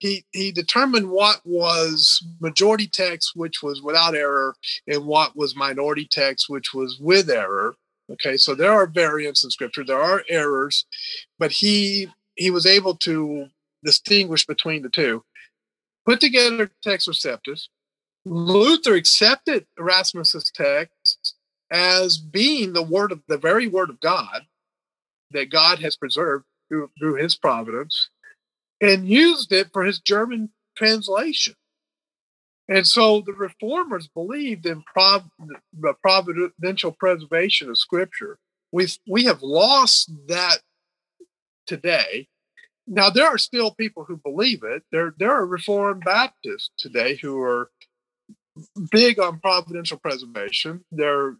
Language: English